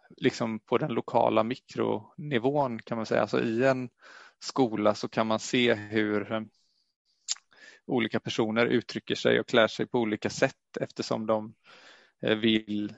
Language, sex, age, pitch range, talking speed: Swedish, male, 20-39, 110-130 Hz, 140 wpm